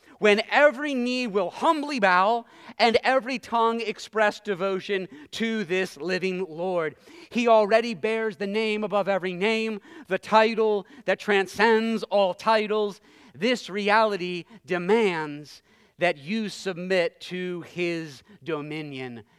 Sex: male